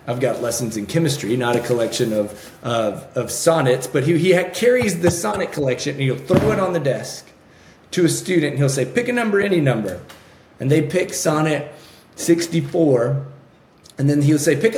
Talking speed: 190 wpm